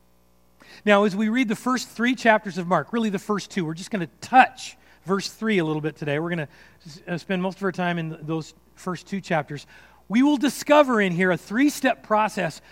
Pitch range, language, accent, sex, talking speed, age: 160-230 Hz, English, American, male, 215 wpm, 40-59